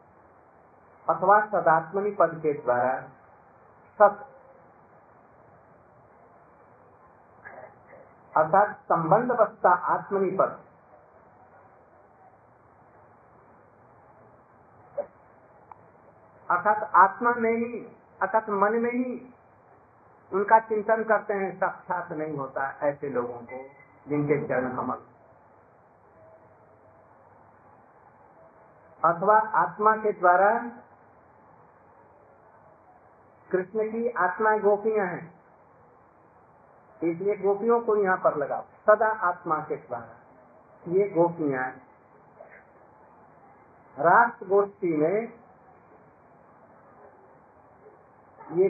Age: 50-69